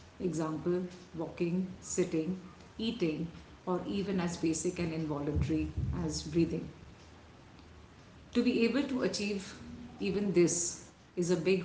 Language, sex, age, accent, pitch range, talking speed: English, female, 50-69, Indian, 155-180 Hz, 115 wpm